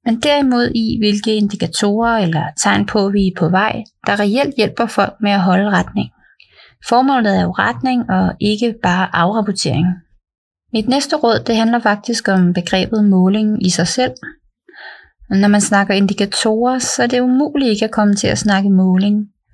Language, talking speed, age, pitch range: Danish, 170 wpm, 30-49, 180-235 Hz